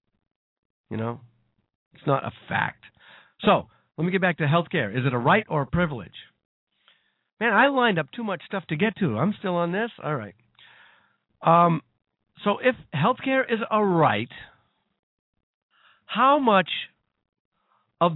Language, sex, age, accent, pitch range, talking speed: English, male, 50-69, American, 130-185 Hz, 150 wpm